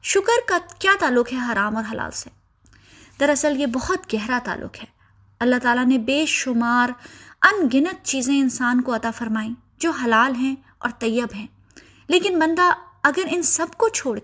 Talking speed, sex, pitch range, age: 170 wpm, female, 230-315 Hz, 20-39